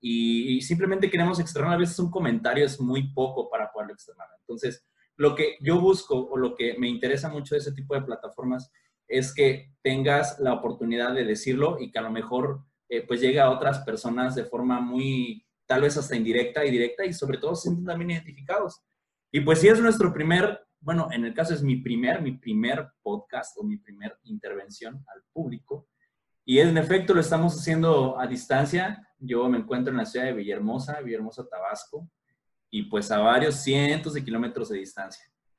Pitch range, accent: 125-175 Hz, Mexican